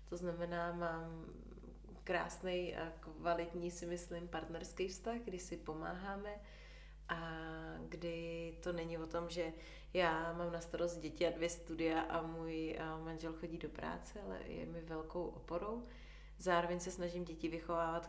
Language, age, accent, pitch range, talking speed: Czech, 30-49, native, 160-175 Hz, 145 wpm